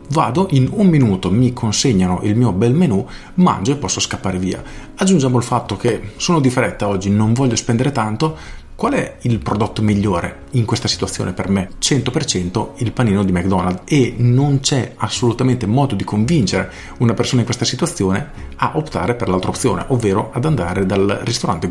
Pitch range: 100-130 Hz